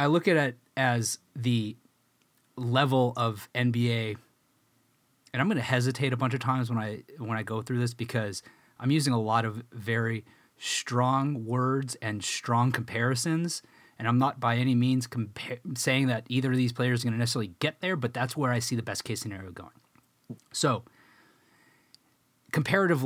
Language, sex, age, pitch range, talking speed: English, male, 30-49, 110-130 Hz, 175 wpm